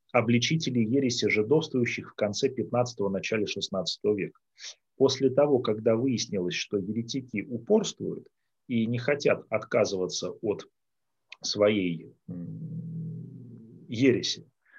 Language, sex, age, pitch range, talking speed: Russian, male, 30-49, 110-140 Hz, 95 wpm